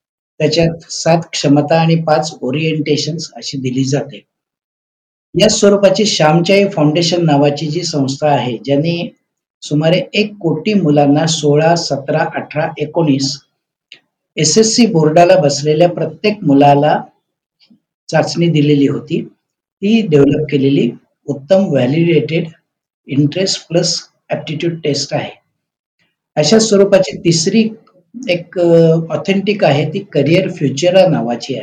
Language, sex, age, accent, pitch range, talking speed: Marathi, male, 60-79, native, 145-180 Hz, 65 wpm